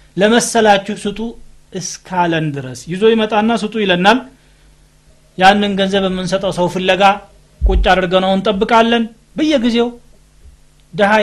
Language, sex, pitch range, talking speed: Amharic, male, 155-210 Hz, 95 wpm